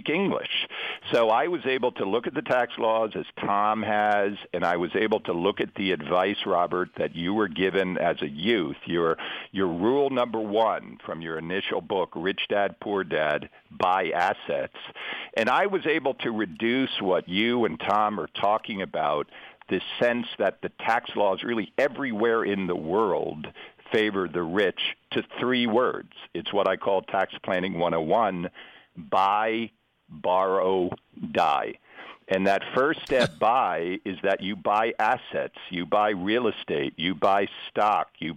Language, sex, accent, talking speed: English, male, American, 160 wpm